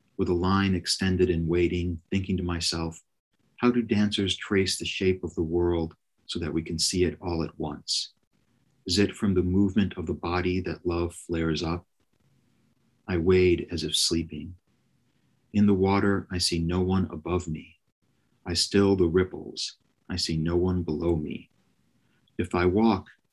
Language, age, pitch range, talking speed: English, 40-59, 85-95 Hz, 170 wpm